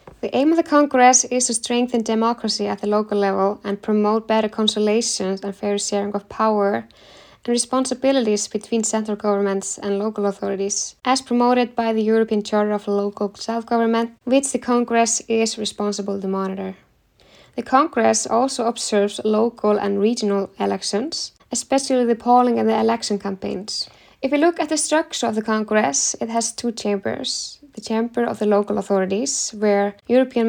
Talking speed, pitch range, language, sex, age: 160 wpm, 200-240 Hz, English, female, 10-29